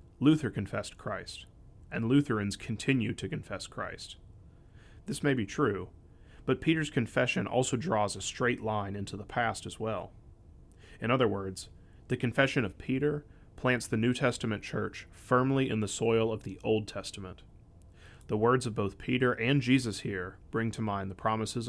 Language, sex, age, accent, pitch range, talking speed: English, male, 30-49, American, 100-125 Hz, 165 wpm